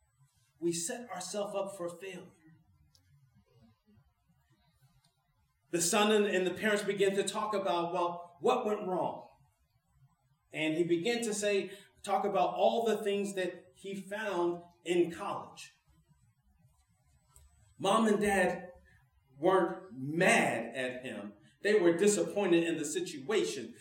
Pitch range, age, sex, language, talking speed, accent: 155-215 Hz, 40-59, male, English, 120 wpm, American